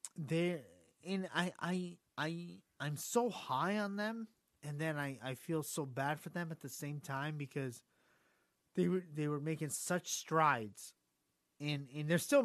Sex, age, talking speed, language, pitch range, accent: male, 30-49, 170 wpm, English, 130-165 Hz, American